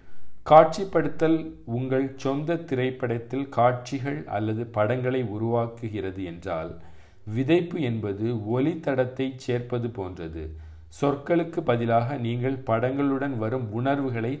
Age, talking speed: 50-69, 90 wpm